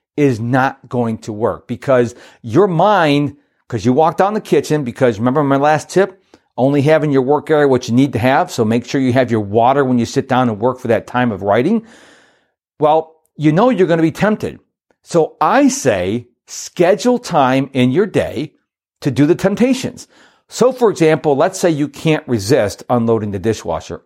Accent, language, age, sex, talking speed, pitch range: American, English, 40-59, male, 195 wpm, 130-195 Hz